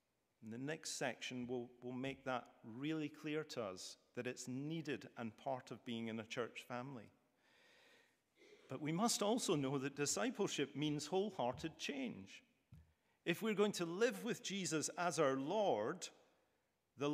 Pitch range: 130-170 Hz